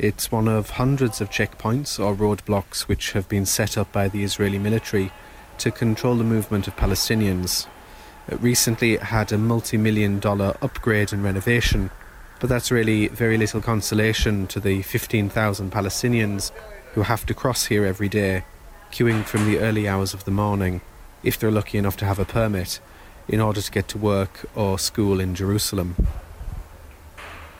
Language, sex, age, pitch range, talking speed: English, male, 30-49, 95-115 Hz, 165 wpm